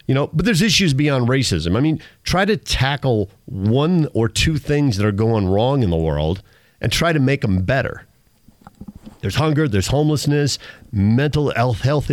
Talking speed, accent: 175 wpm, American